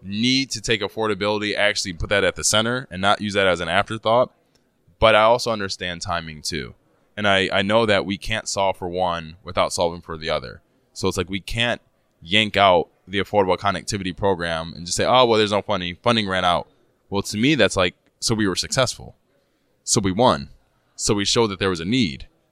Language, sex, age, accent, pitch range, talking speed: English, male, 20-39, American, 90-110 Hz, 215 wpm